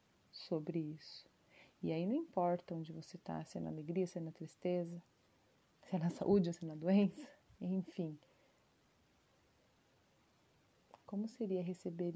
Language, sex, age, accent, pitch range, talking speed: Portuguese, female, 30-49, Brazilian, 170-195 Hz, 145 wpm